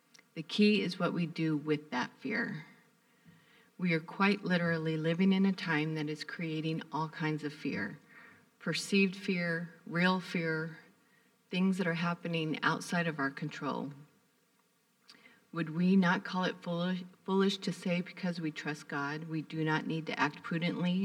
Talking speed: 160 wpm